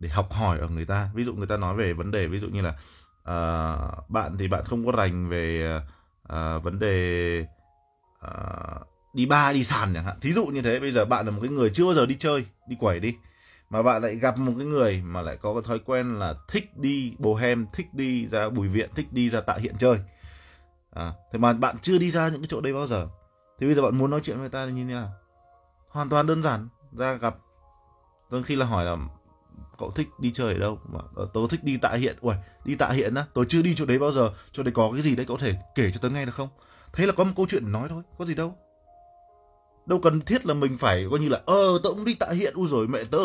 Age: 20-39